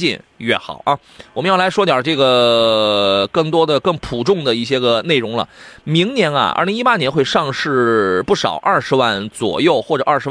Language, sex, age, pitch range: Chinese, male, 20-39, 120-185 Hz